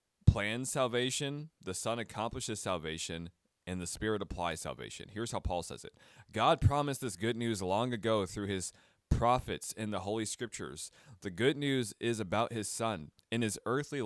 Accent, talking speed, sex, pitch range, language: American, 170 wpm, male, 100-130 Hz, English